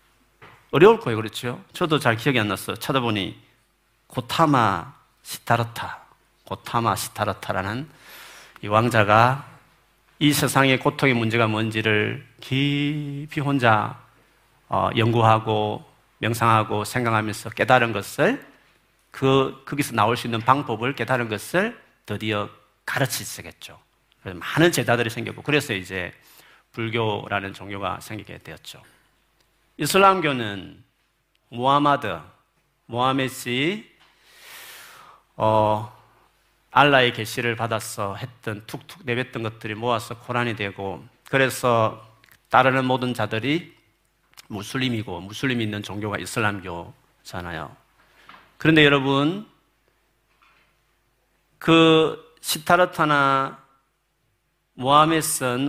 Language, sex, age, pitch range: Korean, male, 40-59, 110-140 Hz